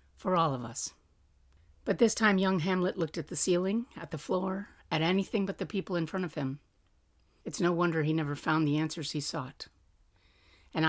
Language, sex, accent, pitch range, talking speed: English, female, American, 140-195 Hz, 200 wpm